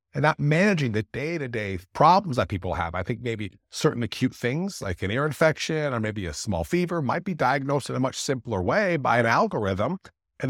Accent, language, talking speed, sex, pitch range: American, English, 205 wpm, male, 95-140 Hz